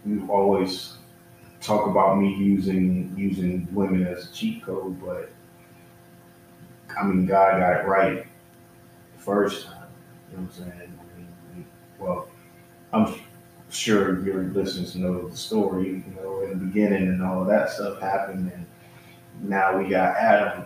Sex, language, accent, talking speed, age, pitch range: male, English, American, 155 wpm, 30-49, 90-105 Hz